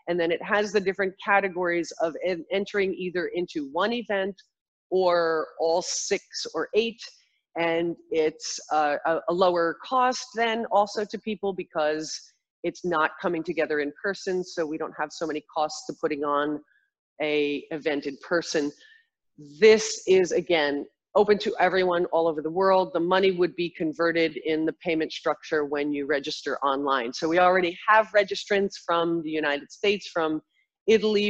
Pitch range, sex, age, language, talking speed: 165-210 Hz, female, 40-59, English, 160 wpm